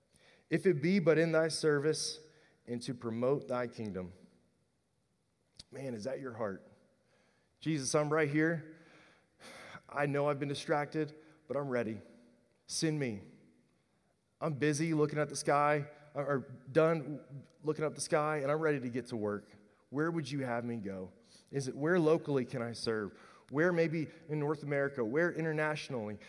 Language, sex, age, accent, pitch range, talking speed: English, male, 30-49, American, 125-165 Hz, 160 wpm